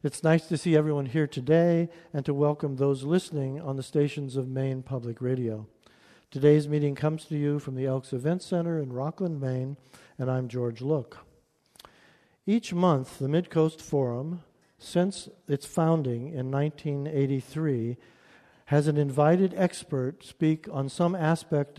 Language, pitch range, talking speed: English, 130-155 Hz, 150 wpm